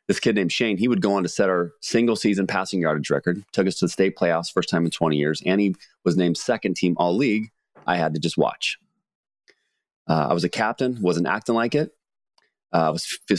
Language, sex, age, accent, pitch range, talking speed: English, male, 30-49, American, 90-110 Hz, 230 wpm